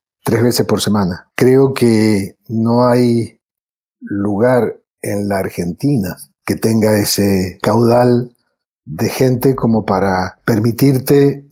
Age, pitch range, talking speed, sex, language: 50-69, 105-130 Hz, 110 wpm, male, Spanish